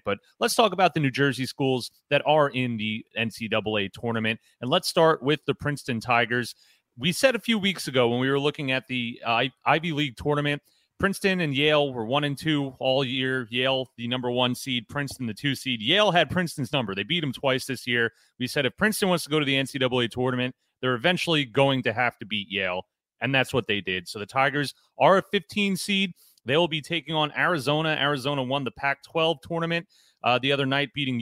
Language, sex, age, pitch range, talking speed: English, male, 30-49, 125-165 Hz, 215 wpm